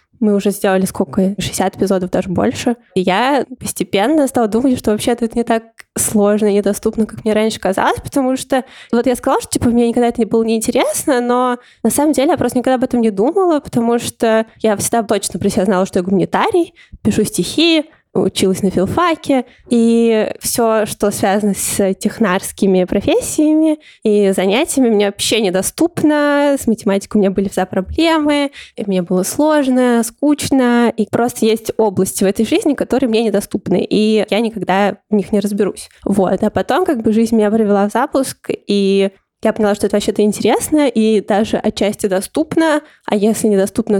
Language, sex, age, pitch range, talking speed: Russian, female, 20-39, 200-250 Hz, 175 wpm